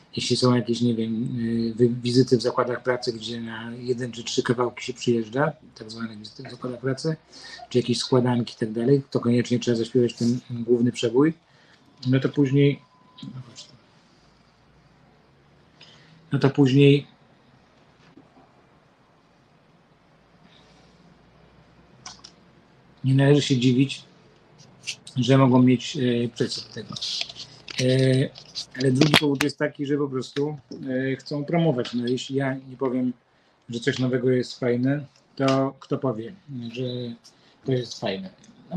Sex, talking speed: male, 120 wpm